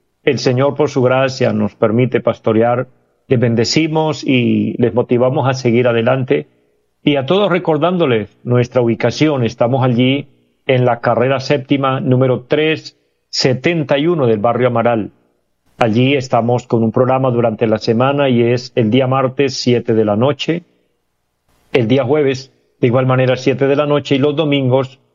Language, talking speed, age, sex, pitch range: Spanish, 150 wpm, 40-59, male, 110-135 Hz